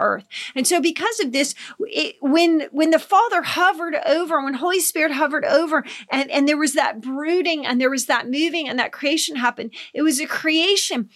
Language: English